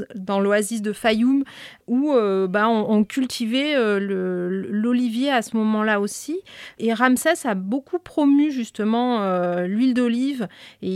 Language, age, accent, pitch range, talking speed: French, 30-49, French, 200-260 Hz, 150 wpm